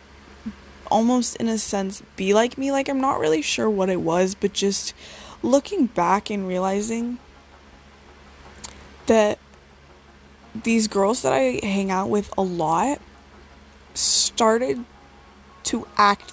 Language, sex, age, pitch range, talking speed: English, female, 20-39, 135-225 Hz, 125 wpm